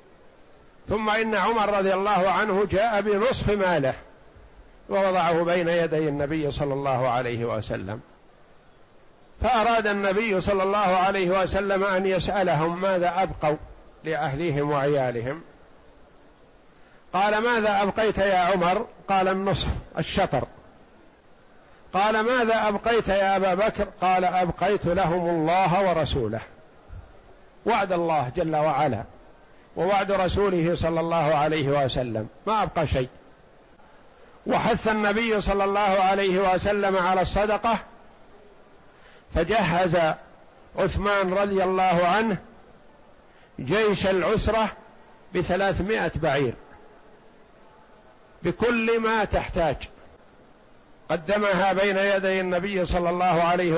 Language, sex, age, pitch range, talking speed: Arabic, male, 50-69, 165-200 Hz, 100 wpm